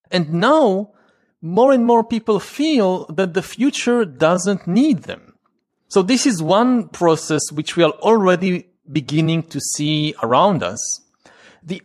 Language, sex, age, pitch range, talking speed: English, male, 40-59, 155-215 Hz, 140 wpm